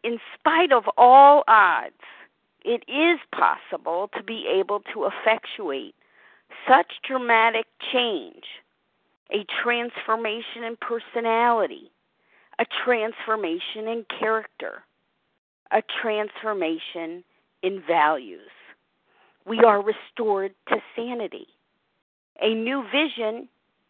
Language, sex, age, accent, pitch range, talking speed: English, female, 50-69, American, 195-245 Hz, 90 wpm